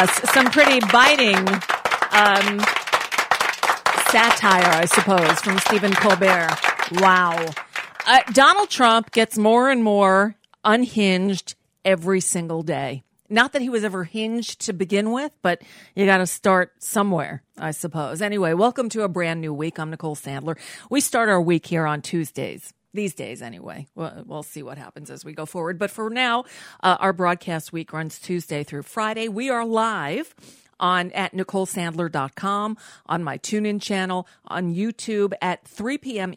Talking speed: 155 wpm